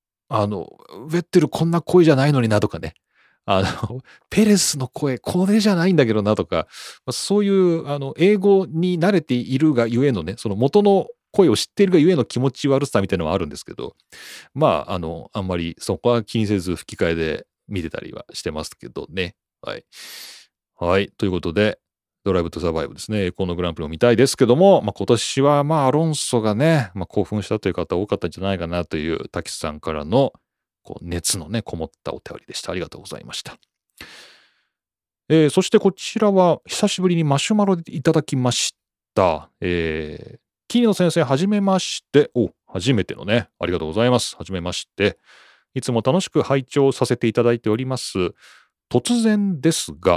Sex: male